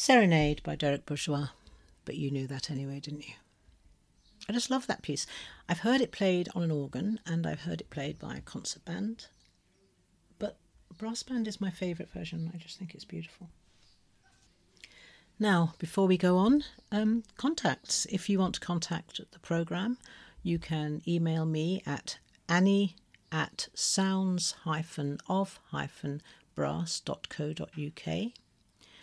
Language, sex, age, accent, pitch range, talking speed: English, female, 50-69, British, 135-180 Hz, 135 wpm